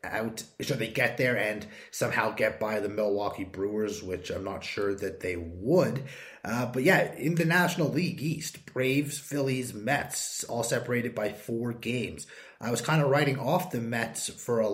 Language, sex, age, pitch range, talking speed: English, male, 30-49, 110-140 Hz, 185 wpm